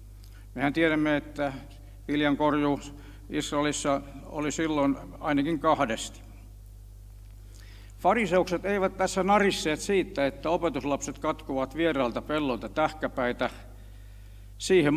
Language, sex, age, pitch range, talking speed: Finnish, male, 60-79, 100-155 Hz, 90 wpm